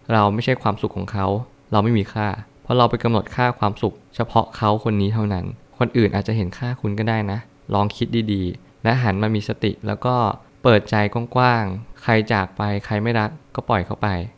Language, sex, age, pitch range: Thai, male, 20-39, 100-120 Hz